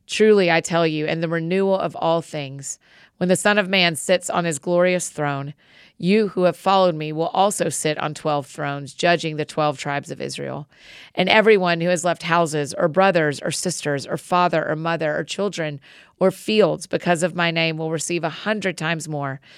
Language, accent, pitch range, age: English, American, 155-190 Hz, 30-49